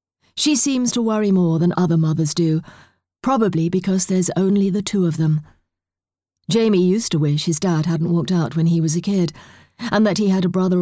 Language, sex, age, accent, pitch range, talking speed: English, female, 40-59, British, 155-190 Hz, 205 wpm